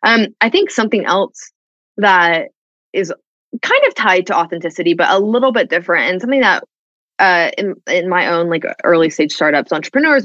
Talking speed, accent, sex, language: 175 wpm, American, female, English